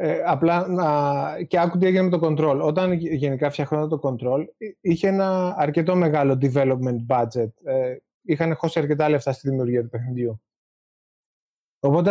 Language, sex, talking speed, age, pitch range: Greek, male, 135 wpm, 20-39, 140-175 Hz